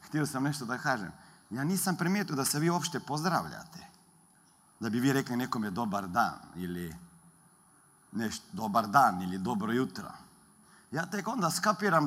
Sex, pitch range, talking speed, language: male, 135-215 Hz, 155 wpm, Croatian